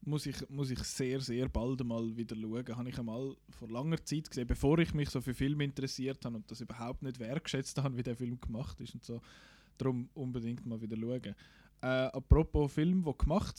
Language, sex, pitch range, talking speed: German, male, 125-165 Hz, 210 wpm